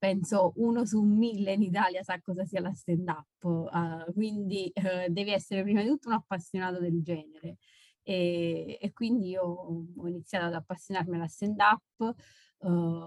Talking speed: 155 wpm